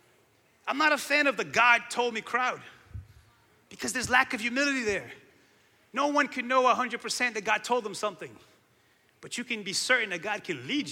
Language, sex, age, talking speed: English, male, 30-49, 180 wpm